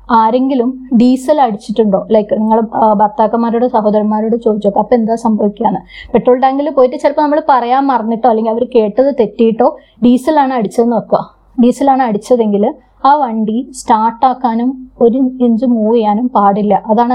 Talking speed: 125 wpm